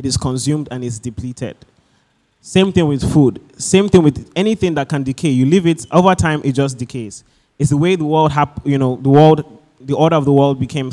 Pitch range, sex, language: 120-150 Hz, male, English